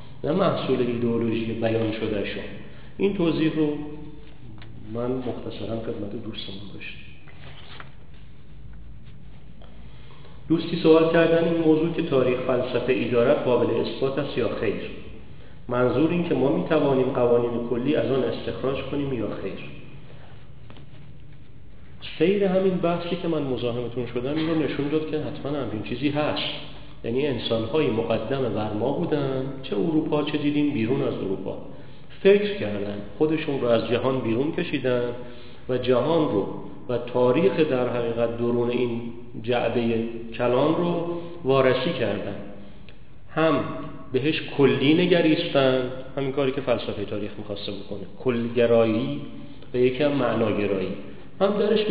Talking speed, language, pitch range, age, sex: 125 wpm, Persian, 115-150 Hz, 40-59, male